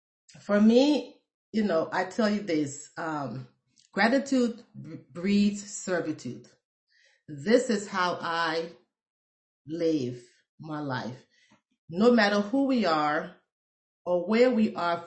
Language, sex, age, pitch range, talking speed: English, female, 30-49, 155-220 Hz, 110 wpm